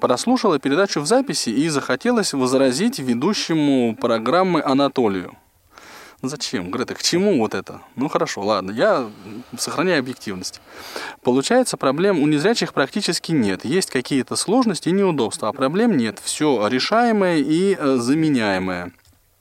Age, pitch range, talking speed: 20-39, 125-185 Hz, 125 wpm